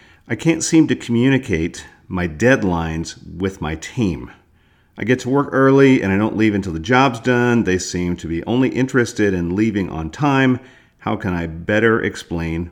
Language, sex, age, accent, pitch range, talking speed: English, male, 50-69, American, 85-115 Hz, 180 wpm